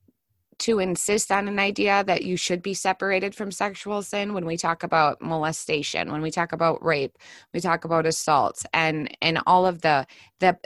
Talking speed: 185 wpm